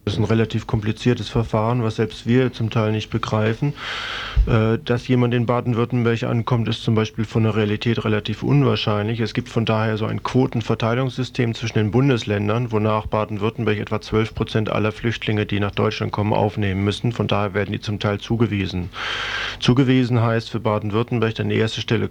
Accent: German